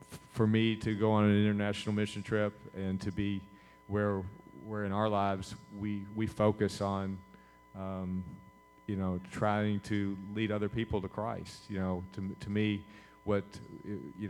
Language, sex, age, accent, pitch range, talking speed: English, male, 40-59, American, 95-110 Hz, 160 wpm